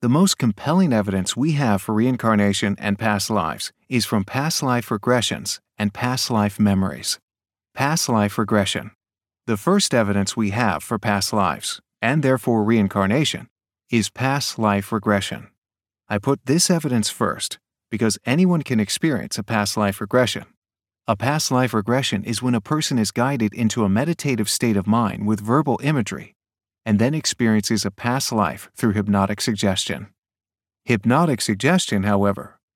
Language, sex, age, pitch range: English, male, 40-59, 105-130 Hz